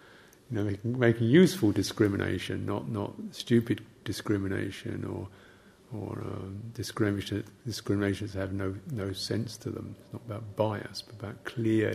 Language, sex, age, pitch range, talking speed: English, male, 50-69, 100-115 Hz, 145 wpm